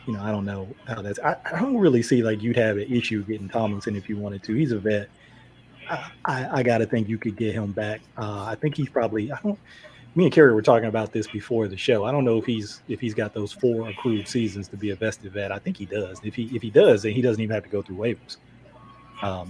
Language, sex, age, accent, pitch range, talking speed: English, male, 30-49, American, 100-120 Hz, 275 wpm